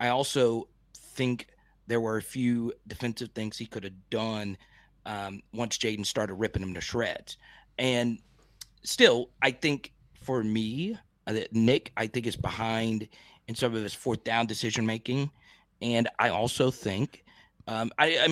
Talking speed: 150 wpm